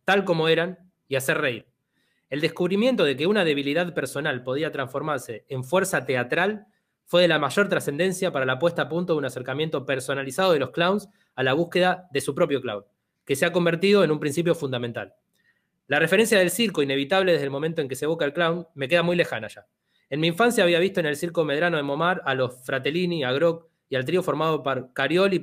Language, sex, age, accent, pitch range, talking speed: Spanish, male, 20-39, Argentinian, 135-175 Hz, 215 wpm